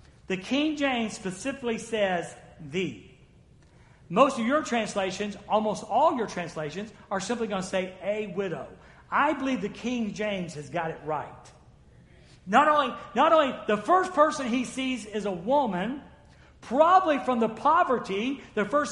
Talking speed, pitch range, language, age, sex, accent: 150 wpm, 185-260 Hz, English, 40-59, male, American